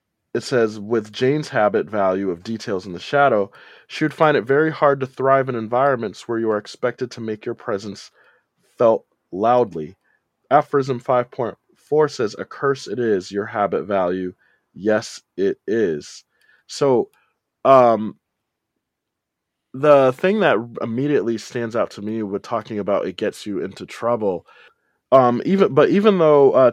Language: English